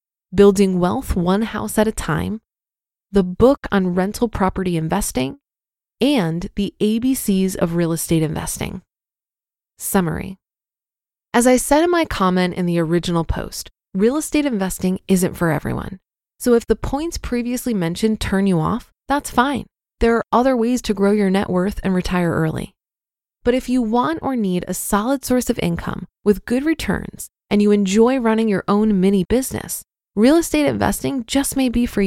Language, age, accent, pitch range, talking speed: English, 20-39, American, 185-240 Hz, 165 wpm